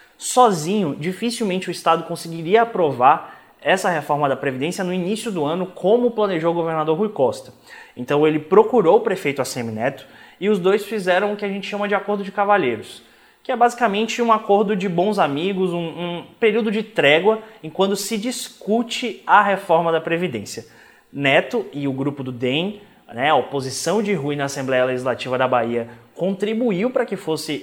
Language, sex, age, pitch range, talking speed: Portuguese, male, 20-39, 145-210 Hz, 175 wpm